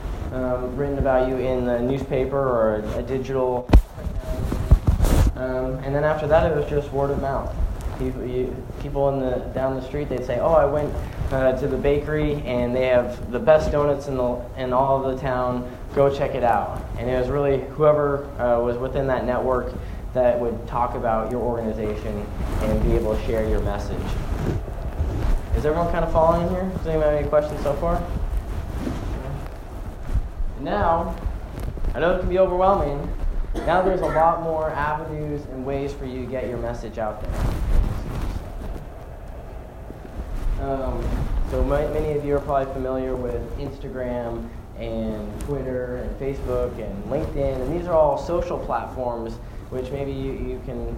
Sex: male